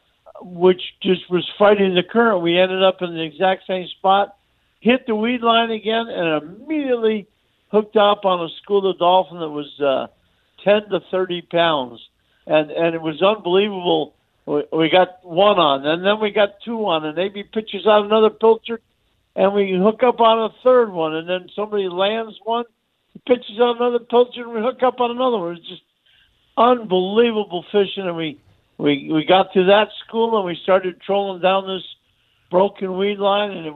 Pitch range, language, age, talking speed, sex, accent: 160-210 Hz, English, 50-69, 185 wpm, male, American